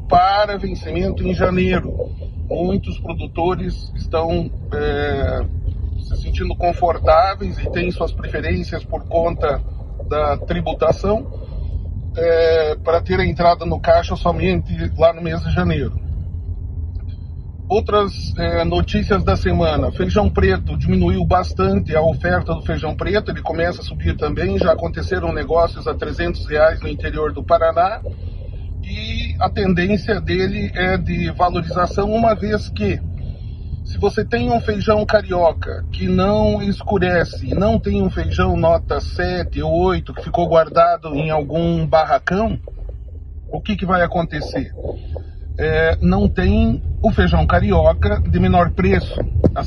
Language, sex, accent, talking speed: Portuguese, male, Brazilian, 125 wpm